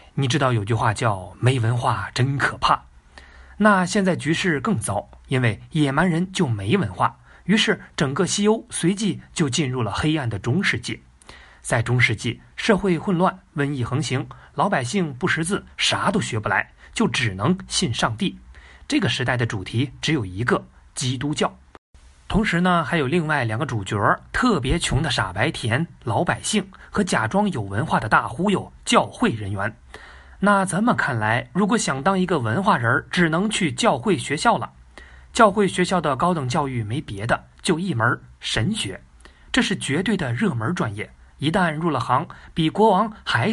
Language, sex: Chinese, male